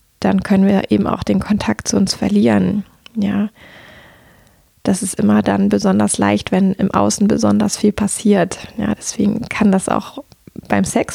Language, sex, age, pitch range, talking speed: German, female, 20-39, 195-230 Hz, 160 wpm